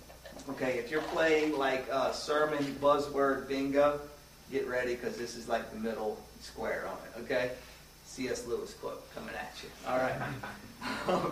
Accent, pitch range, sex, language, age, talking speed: American, 115-140 Hz, male, English, 40-59, 155 wpm